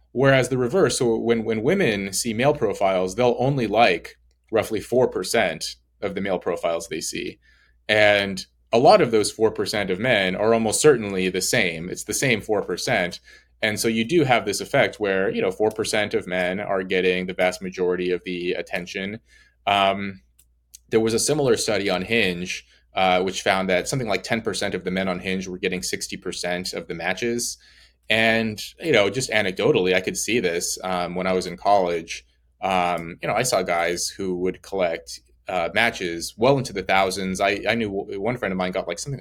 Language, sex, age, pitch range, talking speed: English, male, 20-39, 90-115 Hz, 190 wpm